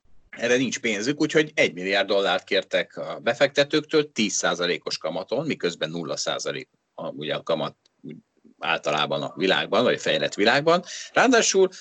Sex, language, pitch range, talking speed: male, Hungarian, 105-160 Hz, 125 wpm